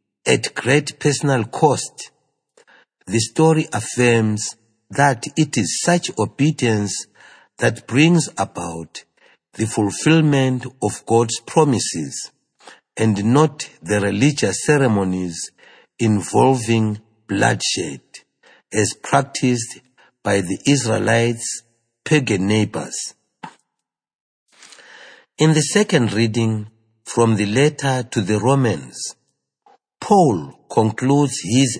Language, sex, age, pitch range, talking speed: English, male, 60-79, 105-140 Hz, 90 wpm